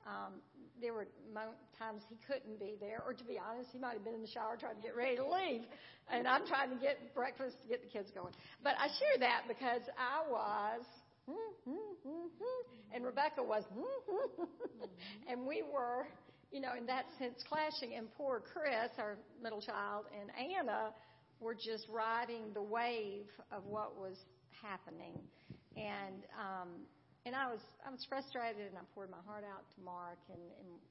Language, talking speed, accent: English, 175 wpm, American